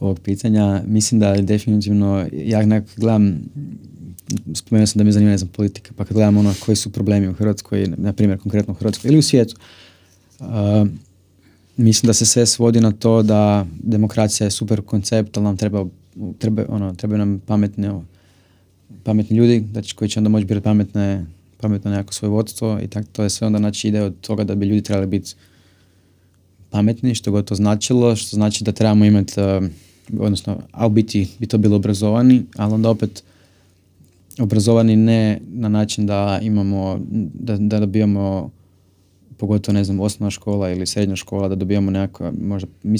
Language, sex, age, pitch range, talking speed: Croatian, male, 20-39, 95-110 Hz, 170 wpm